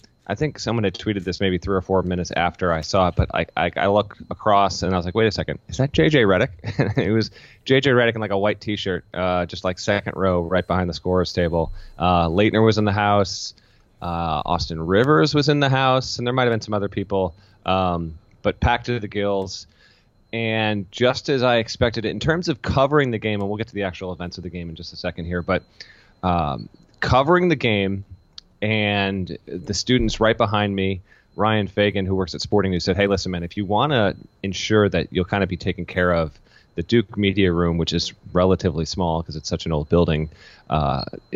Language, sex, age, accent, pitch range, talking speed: English, male, 30-49, American, 90-110 Hz, 225 wpm